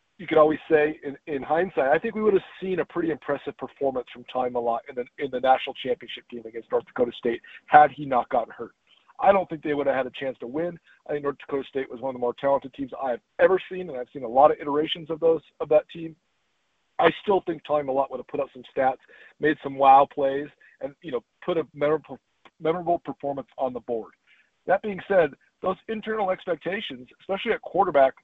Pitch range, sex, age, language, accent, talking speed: 135-170 Hz, male, 40-59, English, American, 235 wpm